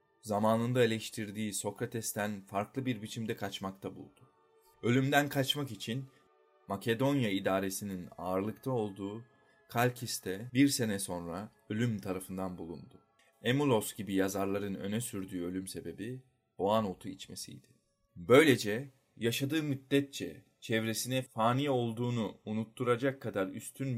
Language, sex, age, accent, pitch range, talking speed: Turkish, male, 30-49, native, 100-125 Hz, 105 wpm